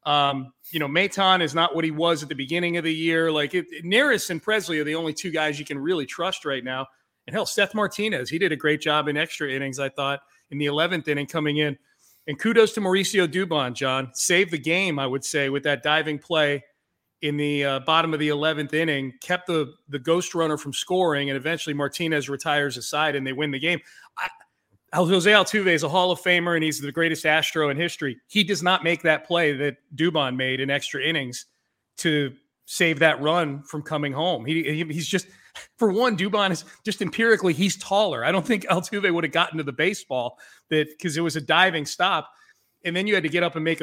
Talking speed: 225 wpm